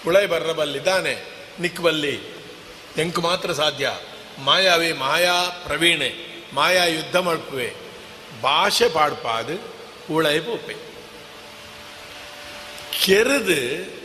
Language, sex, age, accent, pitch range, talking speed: Kannada, male, 50-69, native, 160-235 Hz, 75 wpm